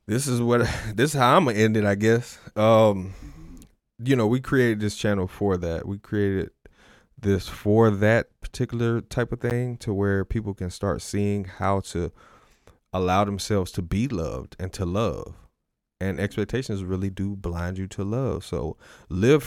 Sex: male